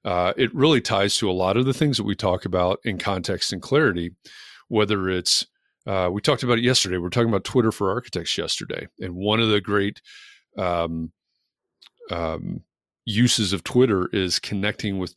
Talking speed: 180 wpm